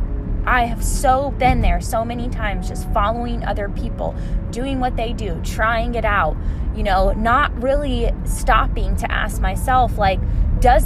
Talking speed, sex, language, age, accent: 160 wpm, female, English, 20-39, American